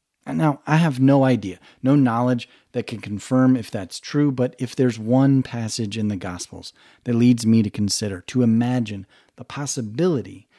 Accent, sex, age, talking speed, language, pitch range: American, male, 30-49, 170 wpm, English, 105-130 Hz